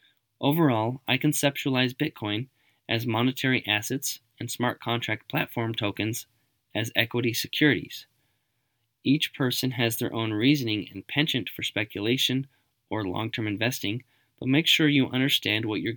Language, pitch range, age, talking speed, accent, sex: English, 110-130 Hz, 20-39, 130 wpm, American, male